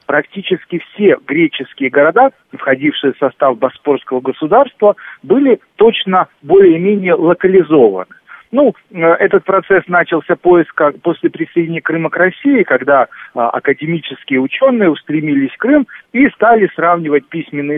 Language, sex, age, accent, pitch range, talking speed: Russian, male, 40-59, native, 145-230 Hz, 110 wpm